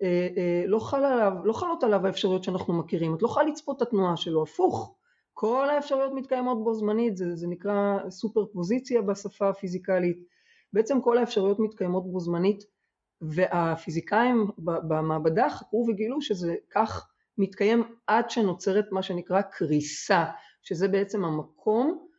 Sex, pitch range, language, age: female, 175-225 Hz, Hebrew, 30-49